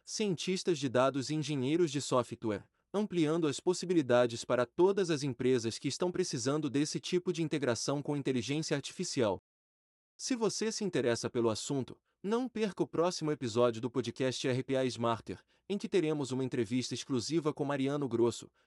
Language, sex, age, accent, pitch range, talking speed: Portuguese, male, 30-49, Brazilian, 125-175 Hz, 155 wpm